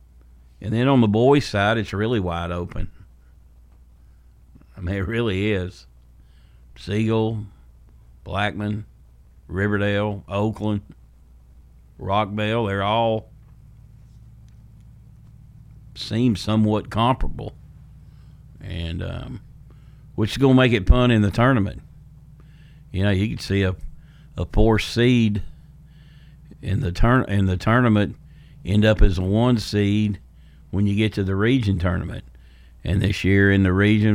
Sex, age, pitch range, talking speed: male, 50-69, 85-110 Hz, 125 wpm